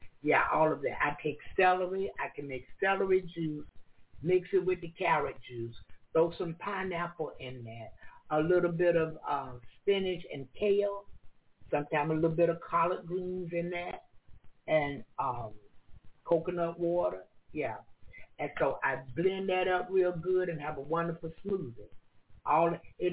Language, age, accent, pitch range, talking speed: English, 60-79, American, 155-205 Hz, 155 wpm